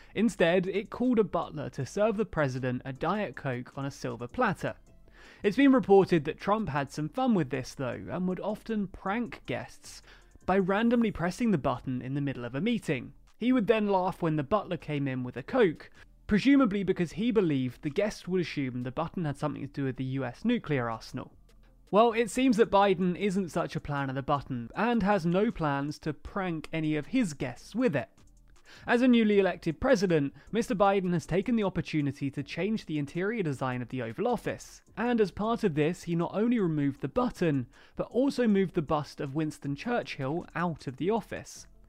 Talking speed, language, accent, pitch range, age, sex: 200 wpm, English, British, 145-210 Hz, 30-49, male